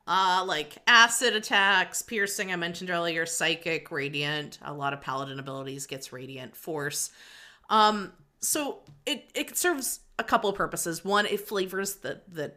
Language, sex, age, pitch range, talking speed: English, female, 30-49, 160-220 Hz, 155 wpm